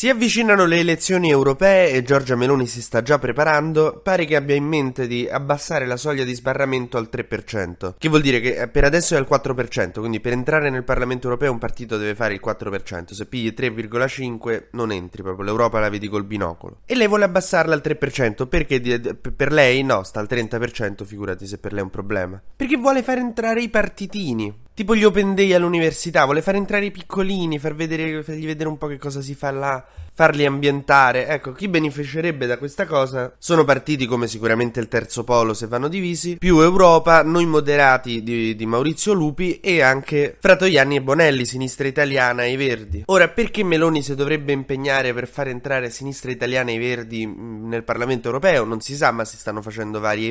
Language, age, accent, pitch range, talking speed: Italian, 20-39, native, 115-155 Hz, 195 wpm